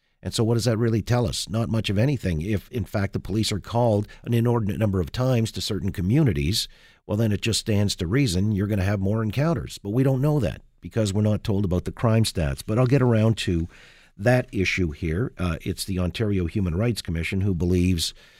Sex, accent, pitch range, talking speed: male, American, 95-120 Hz, 230 wpm